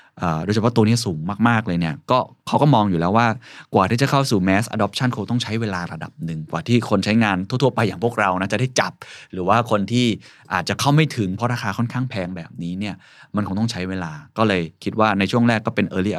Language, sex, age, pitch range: Thai, male, 20-39, 105-135 Hz